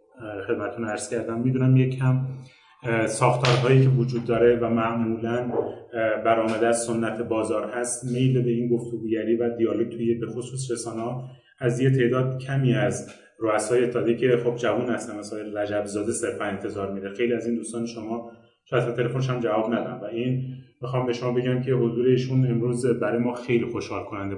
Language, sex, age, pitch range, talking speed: Persian, male, 30-49, 110-125 Hz, 165 wpm